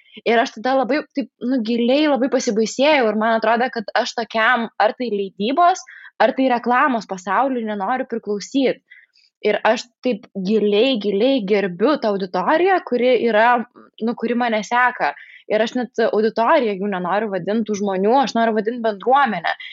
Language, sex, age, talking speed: English, female, 20-39, 150 wpm